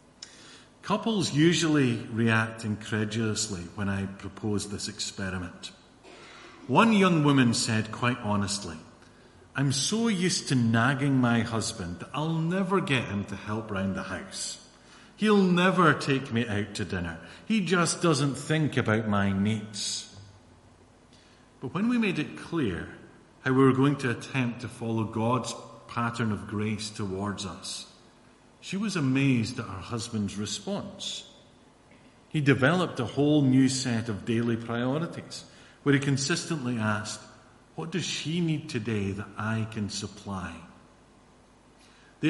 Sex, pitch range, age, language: male, 105-145 Hz, 50-69, English